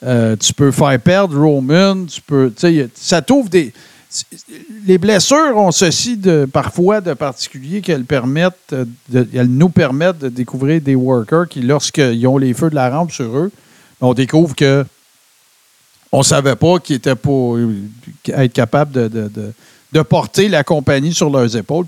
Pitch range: 130-180 Hz